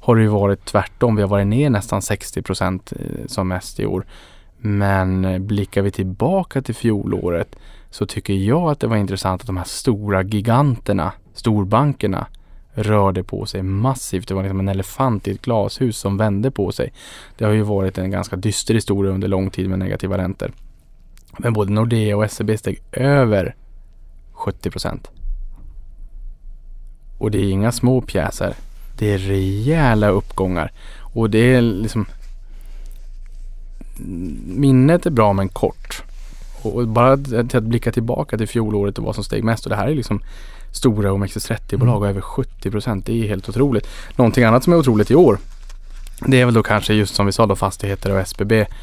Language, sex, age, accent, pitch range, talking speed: Swedish, male, 20-39, Norwegian, 95-115 Hz, 170 wpm